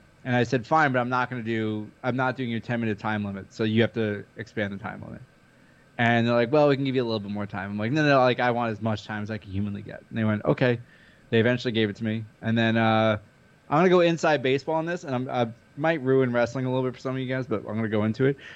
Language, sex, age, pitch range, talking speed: English, male, 20-39, 110-140 Hz, 315 wpm